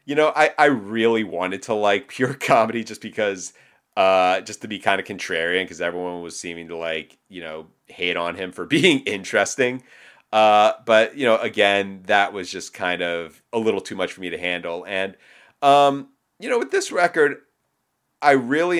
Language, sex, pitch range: English, male, 90-115 Hz